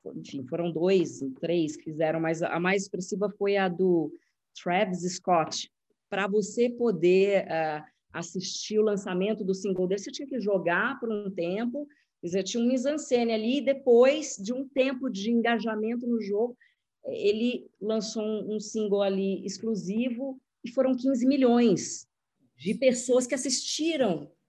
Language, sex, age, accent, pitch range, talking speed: Portuguese, female, 40-59, Brazilian, 190-240 Hz, 150 wpm